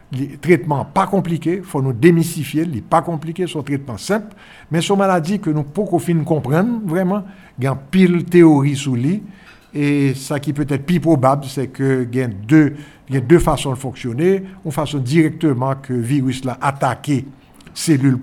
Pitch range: 130-165 Hz